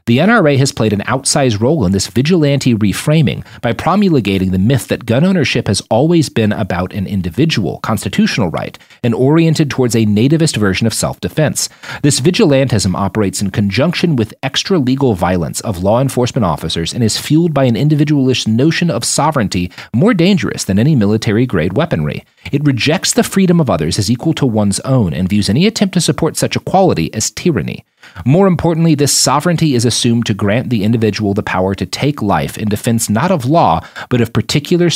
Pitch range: 105-145 Hz